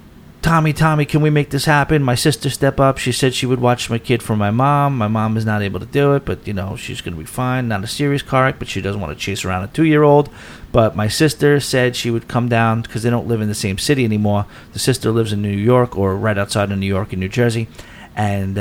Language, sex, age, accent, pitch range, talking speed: English, male, 30-49, American, 105-140 Hz, 275 wpm